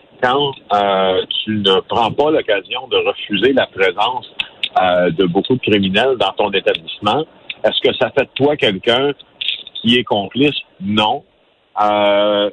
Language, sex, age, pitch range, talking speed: French, male, 50-69, 100-130 Hz, 150 wpm